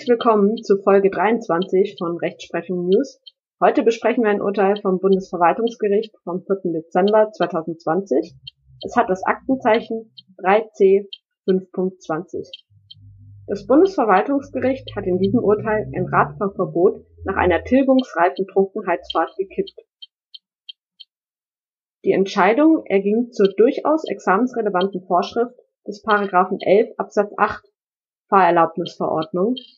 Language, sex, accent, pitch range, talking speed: German, female, German, 180-235 Hz, 100 wpm